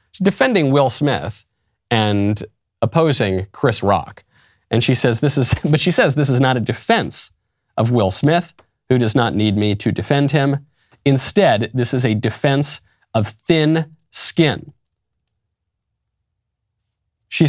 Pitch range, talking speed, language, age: 110-155 Hz, 135 wpm, English, 40-59